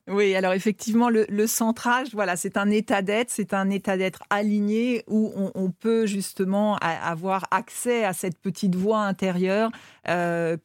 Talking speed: 165 wpm